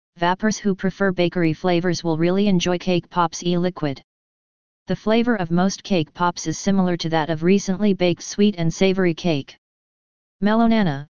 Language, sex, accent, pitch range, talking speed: English, female, American, 165-195 Hz, 155 wpm